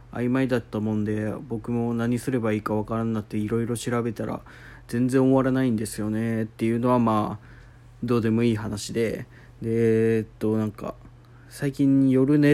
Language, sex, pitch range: Japanese, male, 110-130 Hz